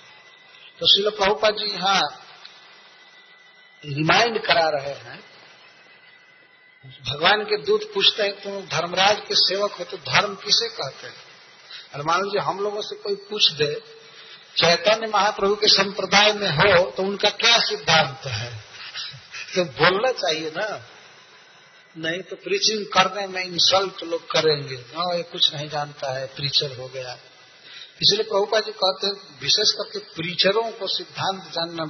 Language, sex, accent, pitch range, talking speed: Hindi, male, native, 170-215 Hz, 145 wpm